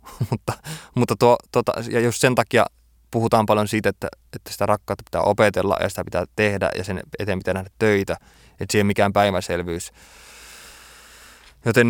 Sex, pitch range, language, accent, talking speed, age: male, 100-125 Hz, Finnish, native, 170 wpm, 20-39